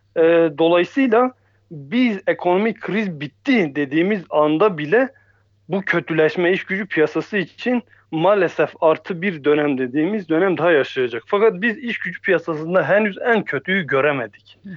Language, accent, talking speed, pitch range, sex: German, Turkish, 125 wpm, 145-200 Hz, male